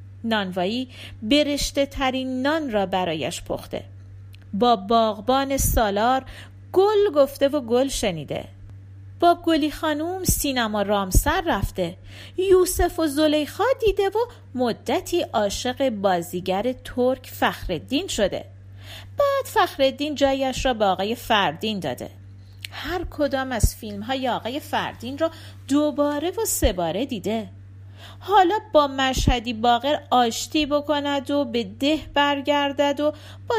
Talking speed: 115 wpm